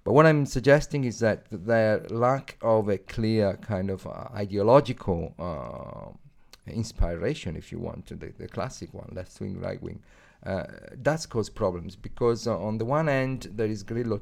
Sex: male